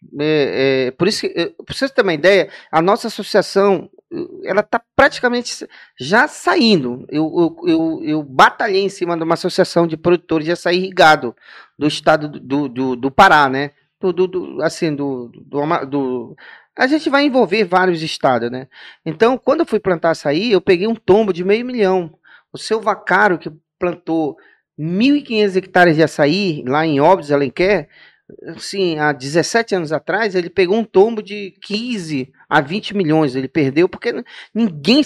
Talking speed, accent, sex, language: 170 wpm, Brazilian, male, Portuguese